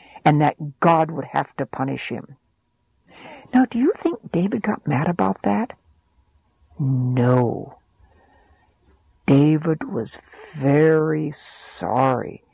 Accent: American